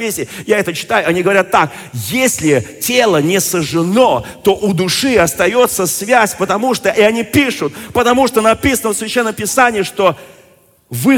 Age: 40-59